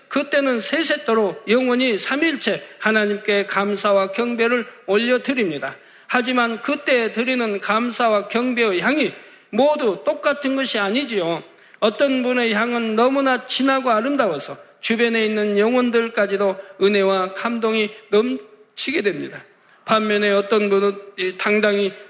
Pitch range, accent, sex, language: 205-240 Hz, native, male, Korean